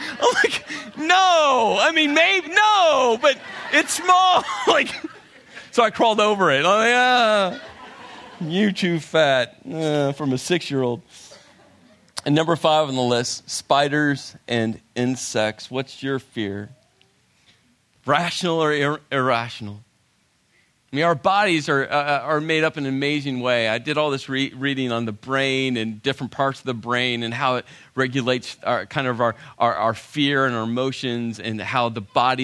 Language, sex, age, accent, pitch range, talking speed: English, male, 40-59, American, 120-155 Hz, 165 wpm